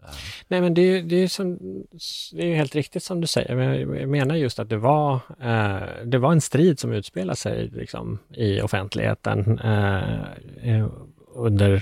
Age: 30-49